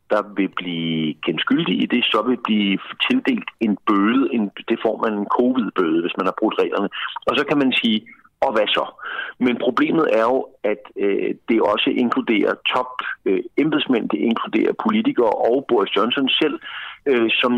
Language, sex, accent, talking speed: Danish, male, native, 165 wpm